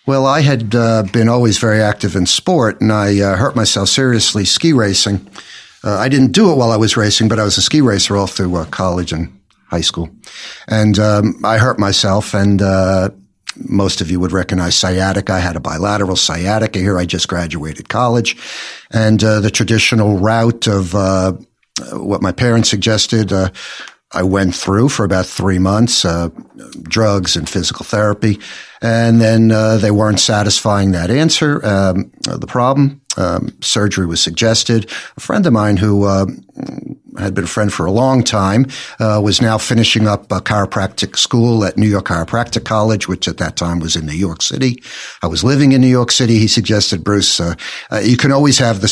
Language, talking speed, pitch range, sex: English, 190 wpm, 95-115 Hz, male